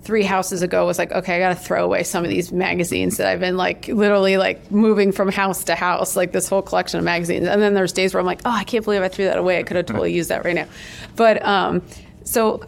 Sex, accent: female, American